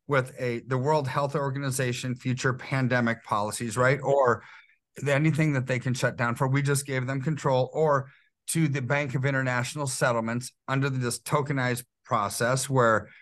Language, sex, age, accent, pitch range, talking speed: English, male, 40-59, American, 115-140 Hz, 160 wpm